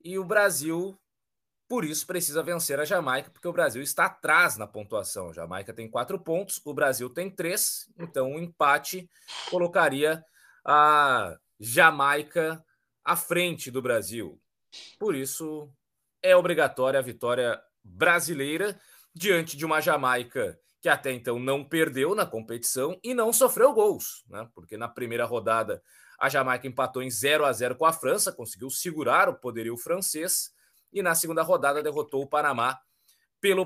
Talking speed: 150 wpm